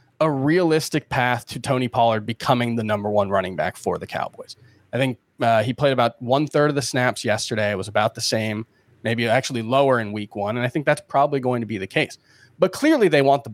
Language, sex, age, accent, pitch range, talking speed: English, male, 20-39, American, 110-135 Hz, 235 wpm